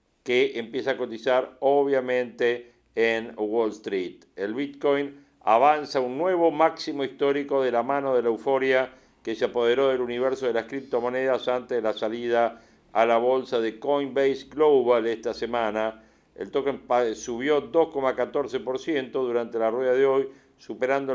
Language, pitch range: Spanish, 120-140 Hz